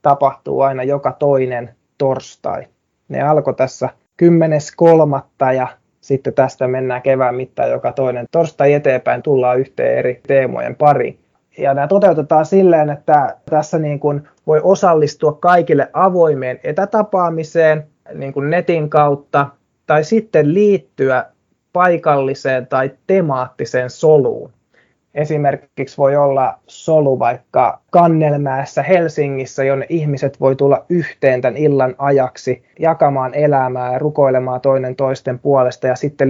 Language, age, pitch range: Finnish, 20-39, 135-155 Hz